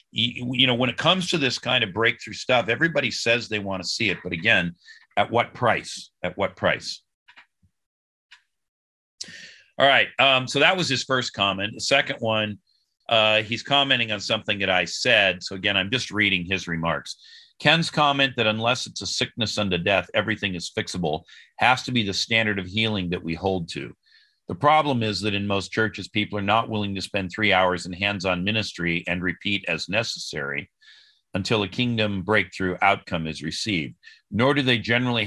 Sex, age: male, 40-59